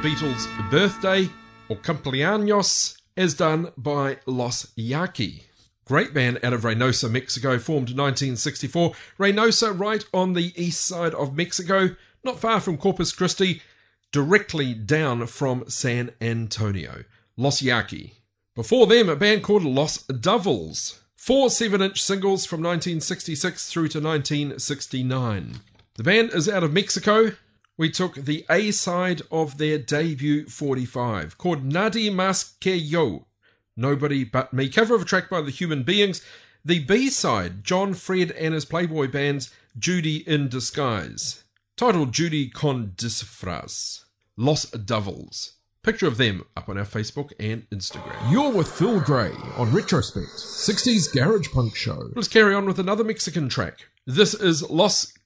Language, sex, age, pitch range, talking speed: English, male, 40-59, 125-185 Hz, 140 wpm